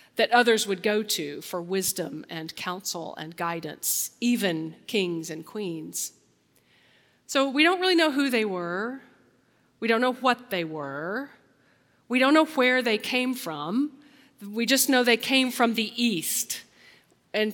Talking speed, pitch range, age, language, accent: 155 wpm, 185-255 Hz, 40-59, English, American